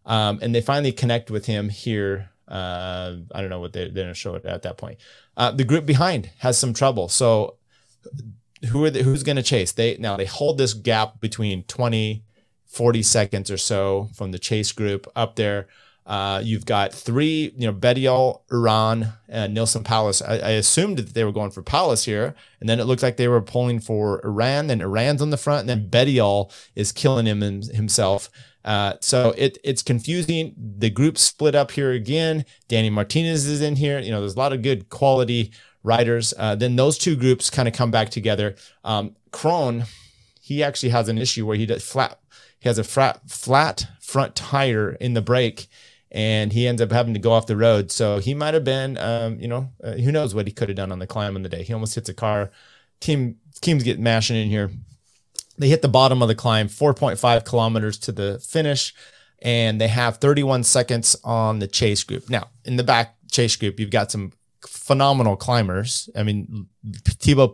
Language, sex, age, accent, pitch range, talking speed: English, male, 30-49, American, 105-130 Hz, 210 wpm